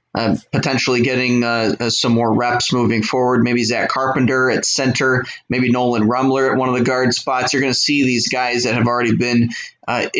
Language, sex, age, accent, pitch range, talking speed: English, male, 20-39, American, 120-135 Hz, 205 wpm